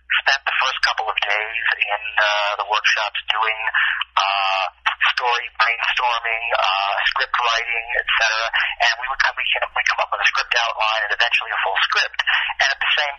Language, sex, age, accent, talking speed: English, male, 40-59, American, 175 wpm